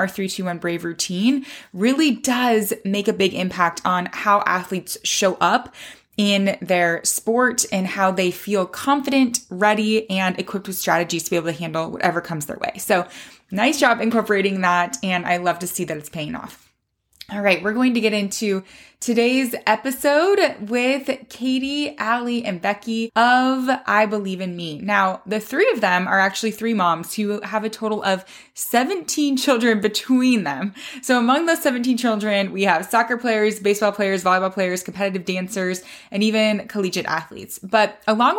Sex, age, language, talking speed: female, 20-39, English, 170 wpm